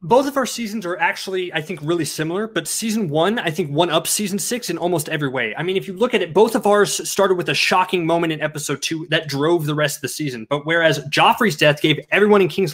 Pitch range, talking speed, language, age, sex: 165-210 Hz, 265 wpm, English, 20-39, male